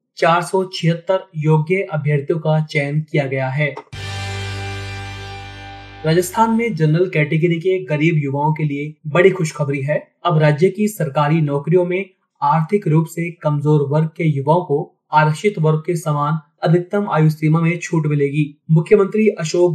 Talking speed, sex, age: 145 wpm, male, 30-49